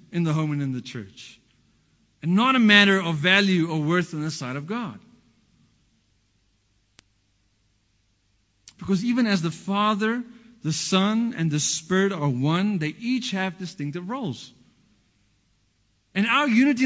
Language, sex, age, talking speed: English, male, 50-69, 140 wpm